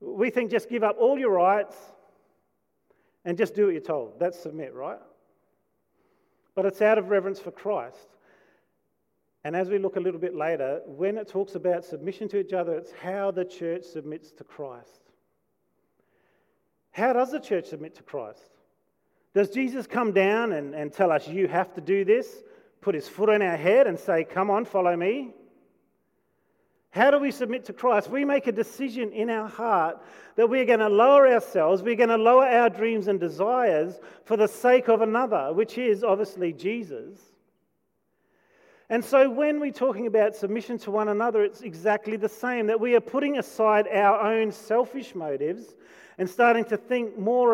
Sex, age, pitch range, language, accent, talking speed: male, 40-59, 195-250 Hz, English, Australian, 180 wpm